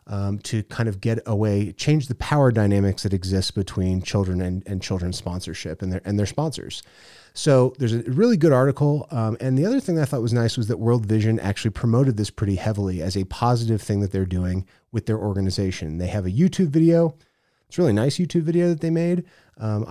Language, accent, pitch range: English, American, 105-135 Hz